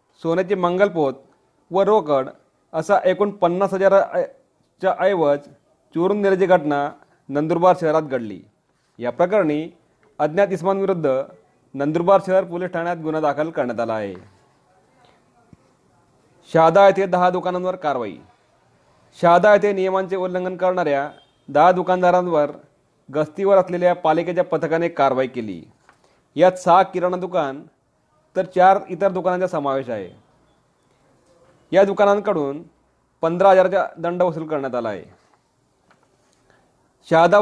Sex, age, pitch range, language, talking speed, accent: male, 40-59, 150-185 Hz, Marathi, 100 wpm, native